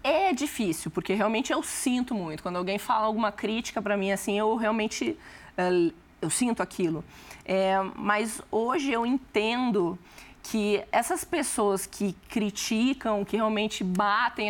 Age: 20-39